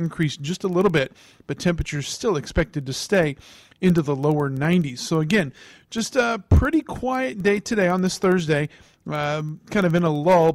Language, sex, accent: English, male, American